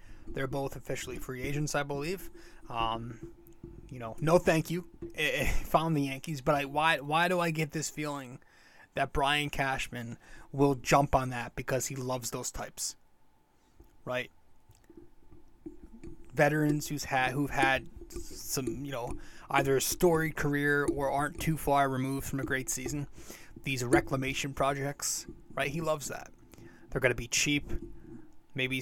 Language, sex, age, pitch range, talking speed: English, male, 20-39, 130-155 Hz, 155 wpm